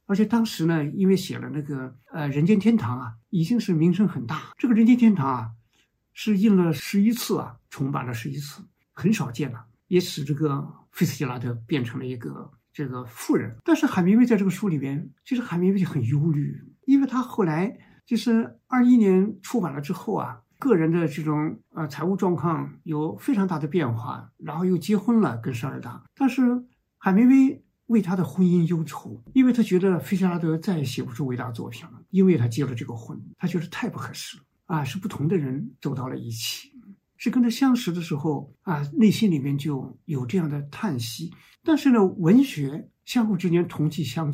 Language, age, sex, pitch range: Chinese, 60-79, male, 145-205 Hz